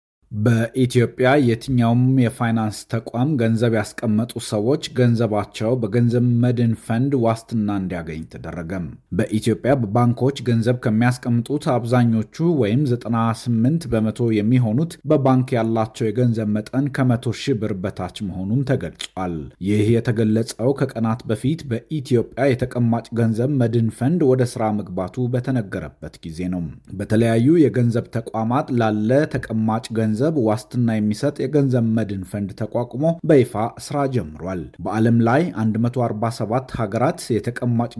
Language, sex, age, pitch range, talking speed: Amharic, male, 30-49, 110-130 Hz, 105 wpm